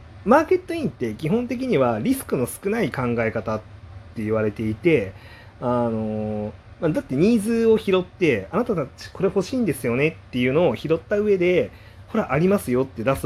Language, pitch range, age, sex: Japanese, 105-180 Hz, 30-49, male